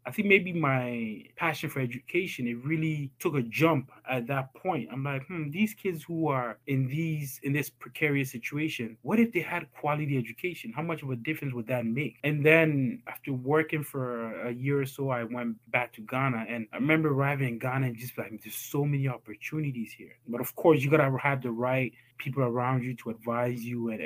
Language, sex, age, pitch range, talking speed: English, male, 20-39, 120-145 Hz, 210 wpm